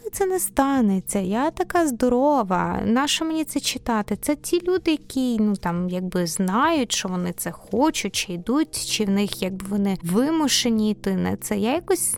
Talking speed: 170 wpm